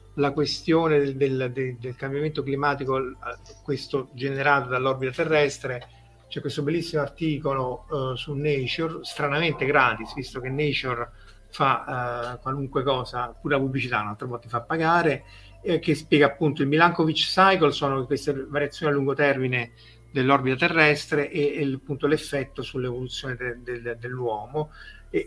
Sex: male